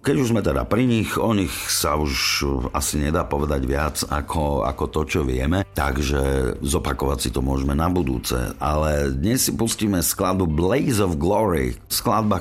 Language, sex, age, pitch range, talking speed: Slovak, male, 50-69, 70-85 Hz, 170 wpm